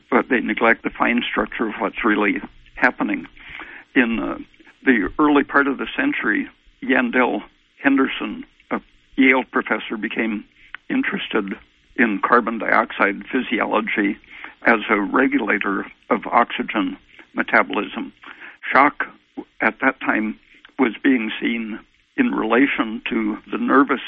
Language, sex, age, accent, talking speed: English, male, 60-79, American, 115 wpm